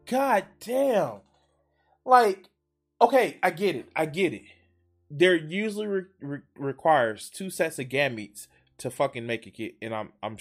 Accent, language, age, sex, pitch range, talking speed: American, English, 20-39, male, 115-190 Hz, 145 wpm